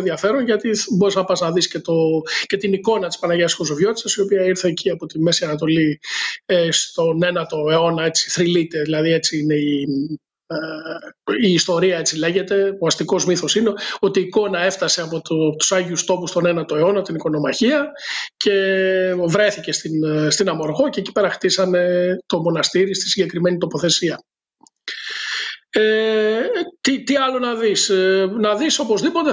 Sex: male